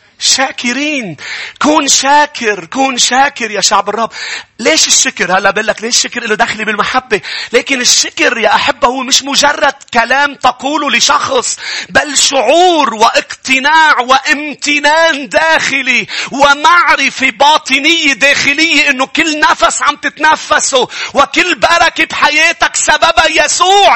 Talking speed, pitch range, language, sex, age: 115 wpm, 230-340 Hz, English, male, 40-59